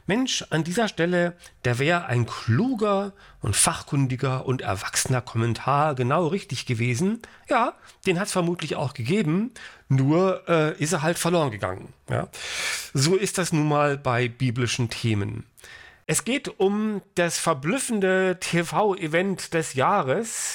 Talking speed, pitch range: 135 wpm, 130-180 Hz